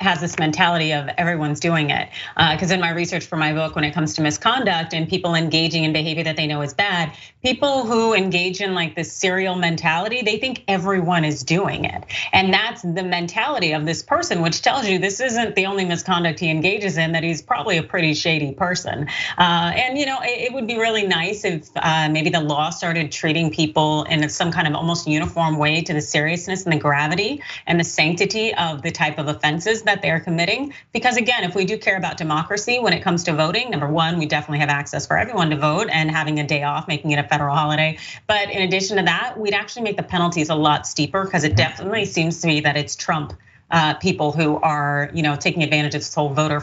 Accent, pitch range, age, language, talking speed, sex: American, 150-185 Hz, 30-49, English, 230 wpm, female